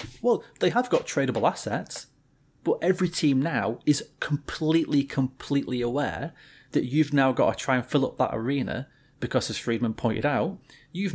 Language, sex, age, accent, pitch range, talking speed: English, male, 30-49, British, 125-160 Hz, 165 wpm